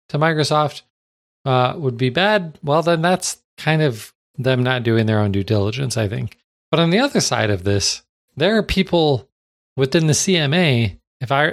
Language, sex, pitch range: English, male, 105-140 Hz